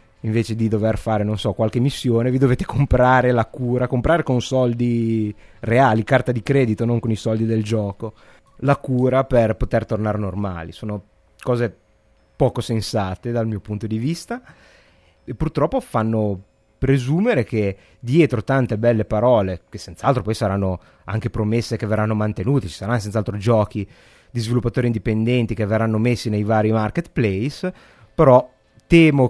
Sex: male